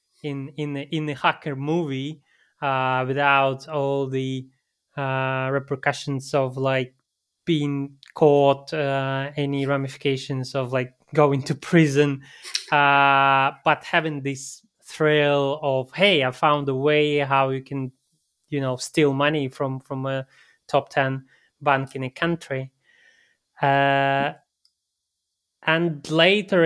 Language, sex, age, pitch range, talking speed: English, male, 20-39, 130-145 Hz, 125 wpm